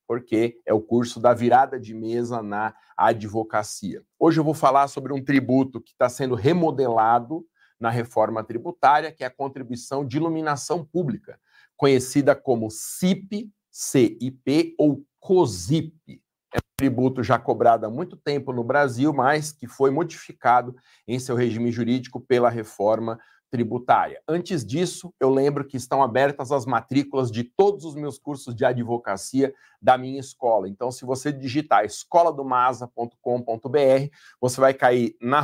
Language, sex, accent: Portuguese, male, Brazilian